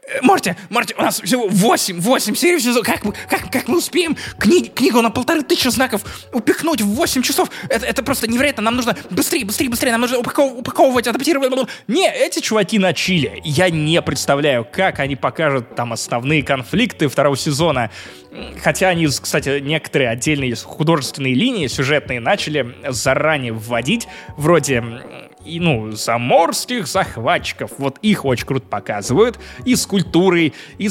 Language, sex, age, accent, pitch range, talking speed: Russian, male, 20-39, native, 135-220 Hz, 150 wpm